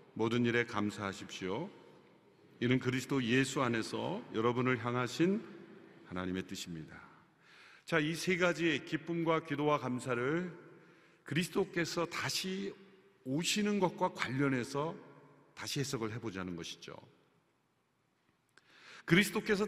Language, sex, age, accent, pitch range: Korean, male, 50-69, native, 125-195 Hz